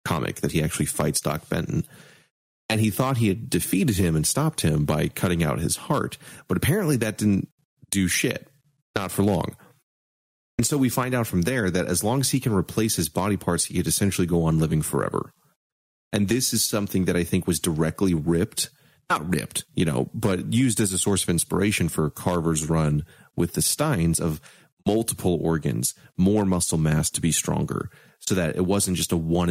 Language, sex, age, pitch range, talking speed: English, male, 30-49, 85-115 Hz, 200 wpm